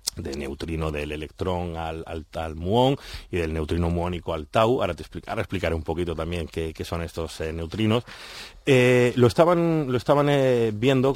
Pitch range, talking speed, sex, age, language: 95-120 Hz, 190 wpm, male, 30-49, English